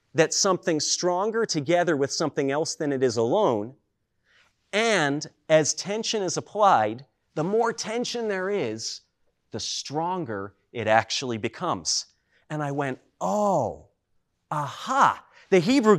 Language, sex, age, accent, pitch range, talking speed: English, male, 40-59, American, 150-215 Hz, 125 wpm